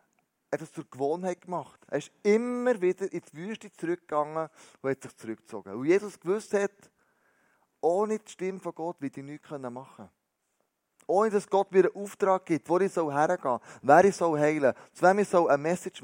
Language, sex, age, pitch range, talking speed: German, male, 30-49, 140-195 Hz, 190 wpm